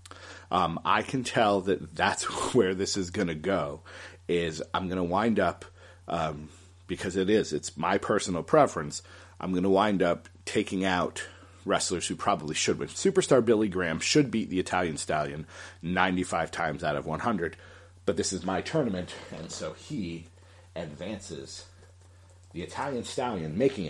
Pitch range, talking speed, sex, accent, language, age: 90-95 Hz, 160 wpm, male, American, English, 40-59